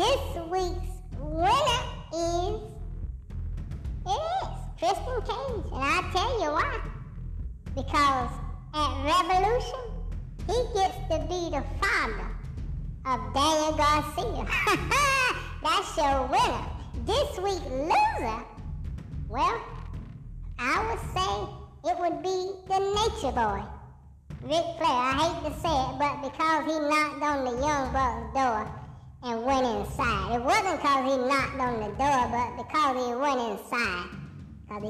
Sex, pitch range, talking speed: male, 225-315 Hz, 125 wpm